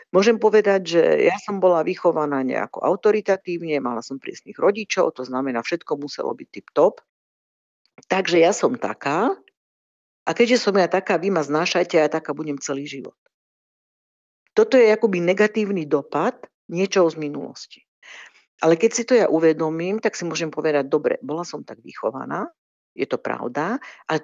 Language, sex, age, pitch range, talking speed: Slovak, female, 50-69, 155-215 Hz, 160 wpm